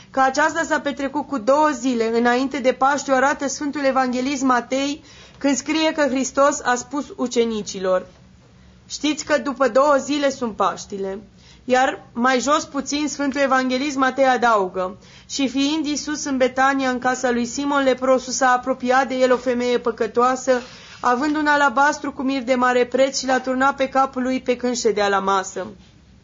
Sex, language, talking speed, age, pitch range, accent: female, Romanian, 165 wpm, 20-39, 250-285 Hz, native